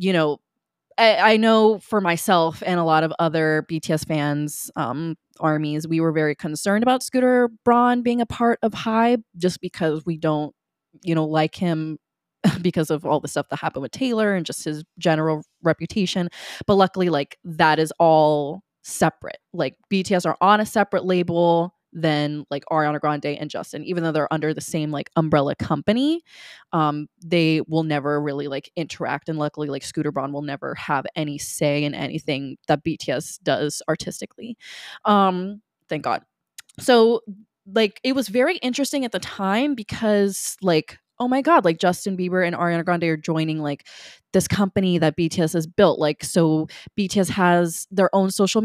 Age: 20-39